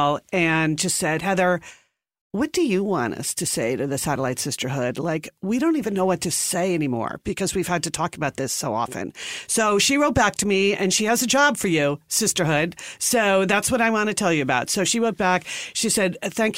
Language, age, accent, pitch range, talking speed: English, 50-69, American, 155-205 Hz, 230 wpm